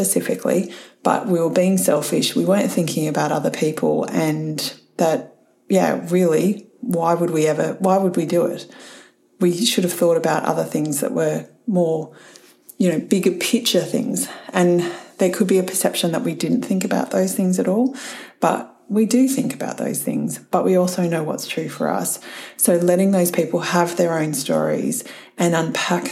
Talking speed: 185 wpm